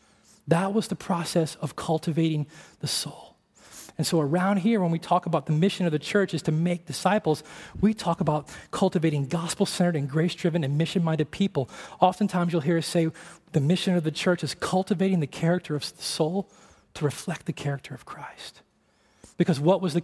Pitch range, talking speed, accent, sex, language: 150-180 Hz, 185 wpm, American, male, English